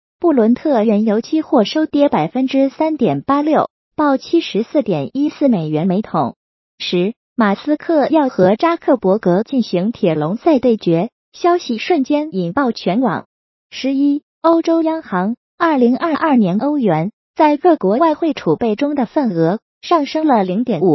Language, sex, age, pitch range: Chinese, female, 20-39, 205-305 Hz